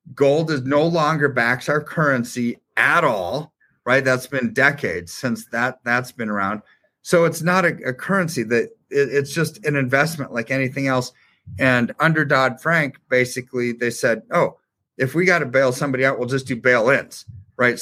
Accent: American